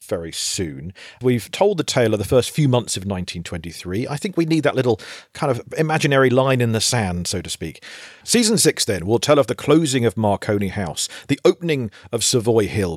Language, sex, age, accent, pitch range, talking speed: English, male, 40-59, British, 100-150 Hz, 210 wpm